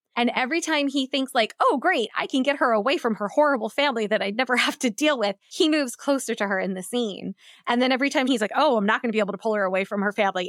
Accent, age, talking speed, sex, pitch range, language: American, 20-39, 295 wpm, female, 185-240 Hz, English